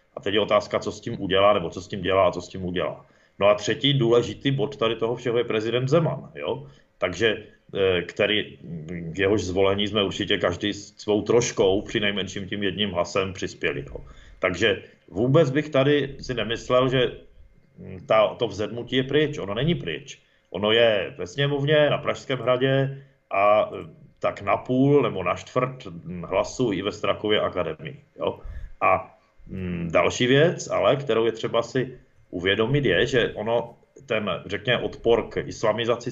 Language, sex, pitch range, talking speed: Czech, male, 105-135 Hz, 165 wpm